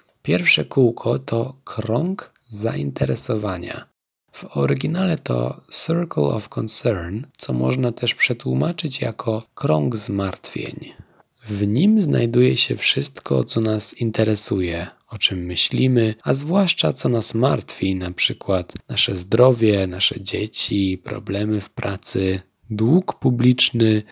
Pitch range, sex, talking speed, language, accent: 95-125 Hz, male, 110 wpm, Polish, native